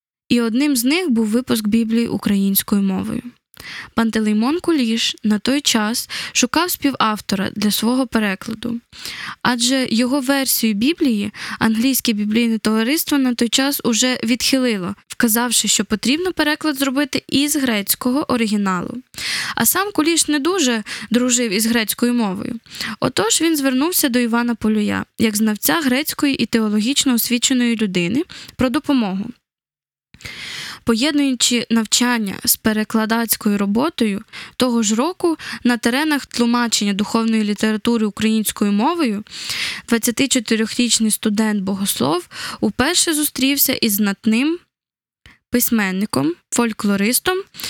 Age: 10-29